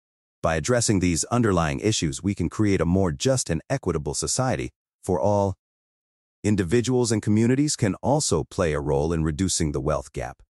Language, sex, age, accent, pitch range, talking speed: English, male, 40-59, American, 80-110 Hz, 165 wpm